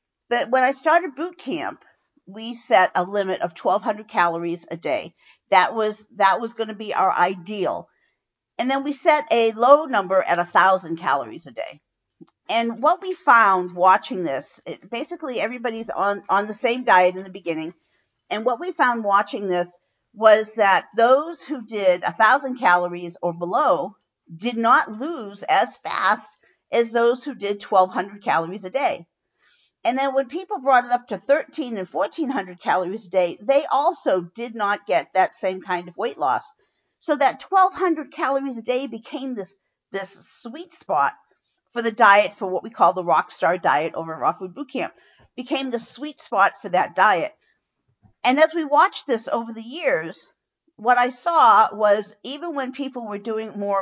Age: 50-69